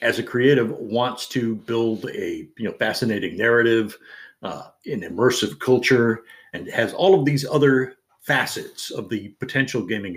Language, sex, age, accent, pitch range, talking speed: English, male, 50-69, American, 120-155 Hz, 155 wpm